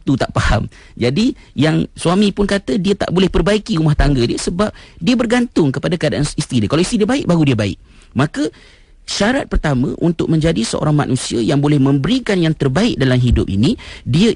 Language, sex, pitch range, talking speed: Malay, male, 115-165 Hz, 190 wpm